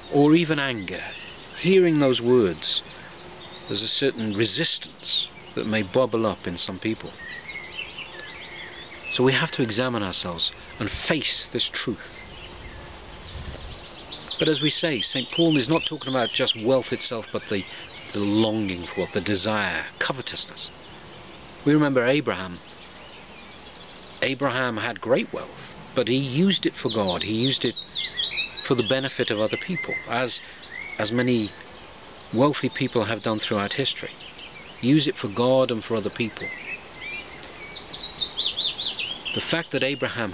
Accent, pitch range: British, 105-135 Hz